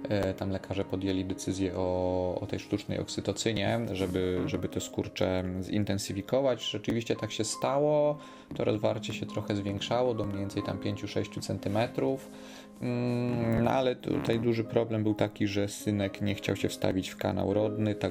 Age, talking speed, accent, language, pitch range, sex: 30-49, 150 wpm, native, Polish, 95-115 Hz, male